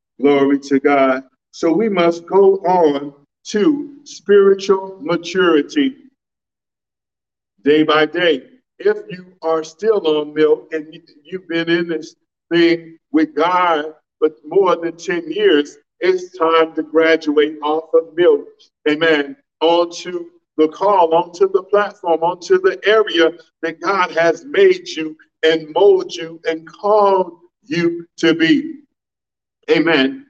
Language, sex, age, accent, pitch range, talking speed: English, male, 50-69, American, 155-215 Hz, 125 wpm